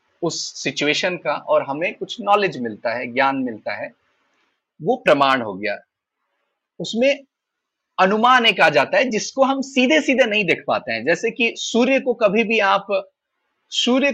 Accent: native